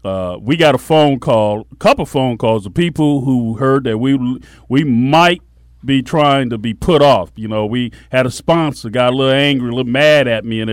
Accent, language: American, English